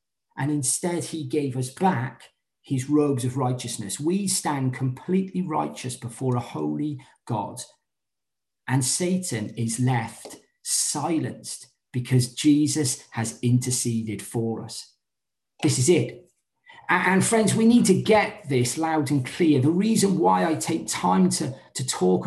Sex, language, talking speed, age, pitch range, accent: male, English, 135 wpm, 40-59, 130-185 Hz, British